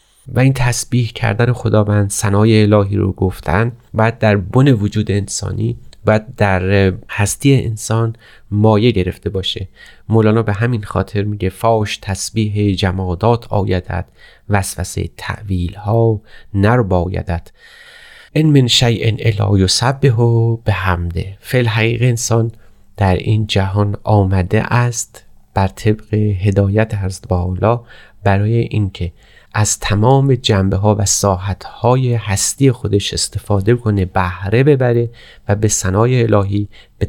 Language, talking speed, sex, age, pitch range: Persian, 125 wpm, male, 30-49, 100-120 Hz